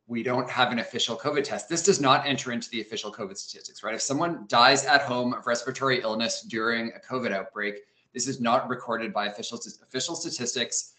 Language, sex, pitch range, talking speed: English, male, 115-140 Hz, 200 wpm